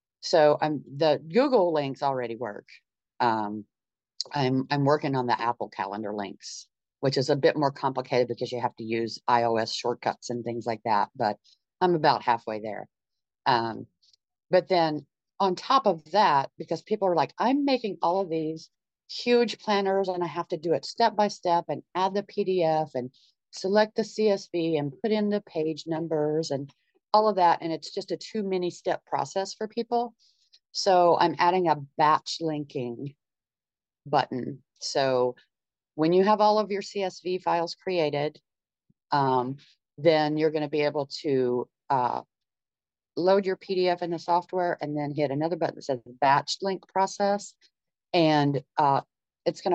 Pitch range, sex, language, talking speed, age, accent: 140-185 Hz, female, English, 165 wpm, 50-69, American